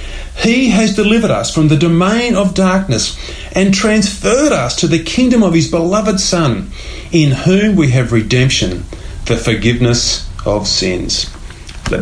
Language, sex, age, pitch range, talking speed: English, male, 40-59, 125-180 Hz, 145 wpm